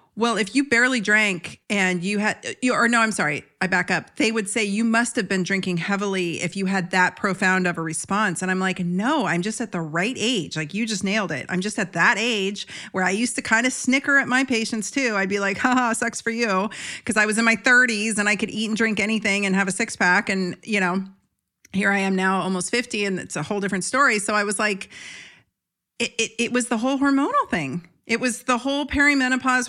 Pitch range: 190-230 Hz